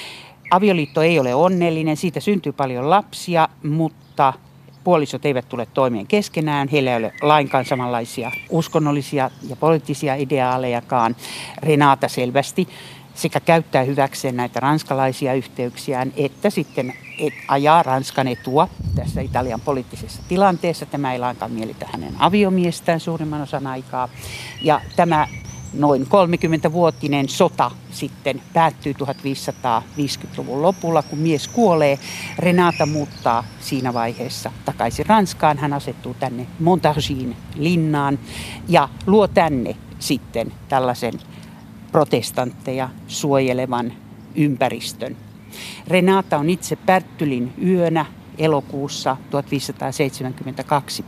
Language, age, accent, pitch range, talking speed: Finnish, 60-79, native, 130-160 Hz, 105 wpm